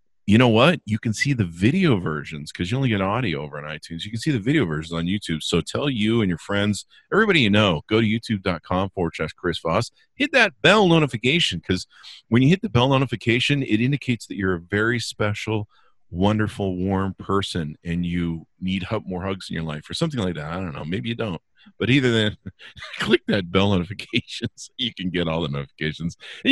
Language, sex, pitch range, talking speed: English, male, 90-120 Hz, 215 wpm